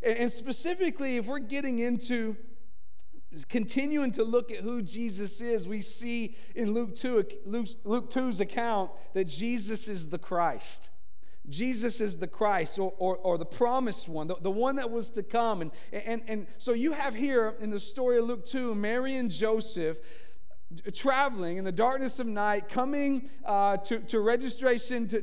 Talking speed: 170 wpm